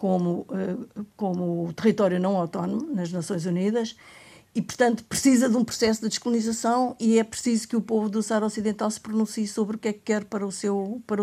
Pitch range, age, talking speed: 195-225 Hz, 50-69, 200 wpm